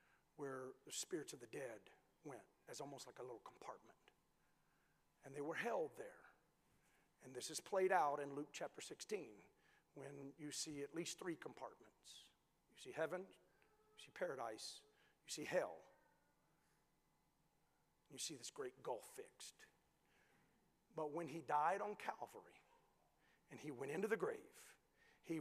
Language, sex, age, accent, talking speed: English, male, 50-69, American, 145 wpm